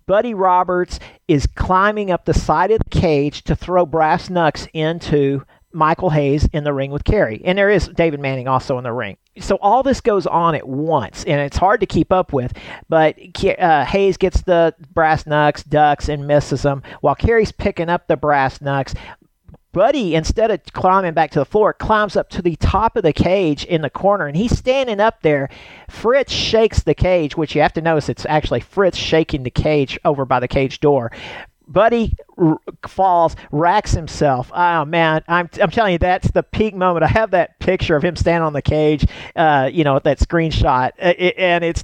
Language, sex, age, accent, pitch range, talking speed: English, male, 50-69, American, 145-180 Hz, 200 wpm